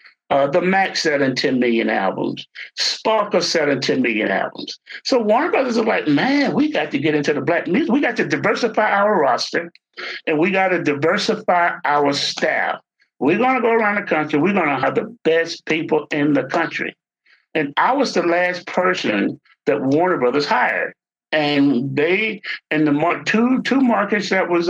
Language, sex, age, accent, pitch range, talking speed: English, male, 60-79, American, 155-220 Hz, 185 wpm